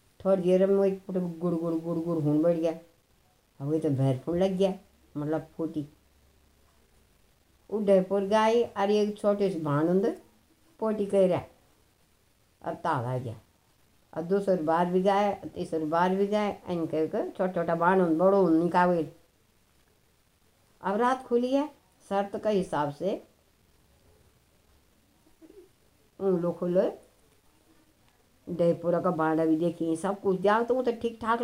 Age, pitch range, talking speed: 60-79, 155-195 Hz, 115 wpm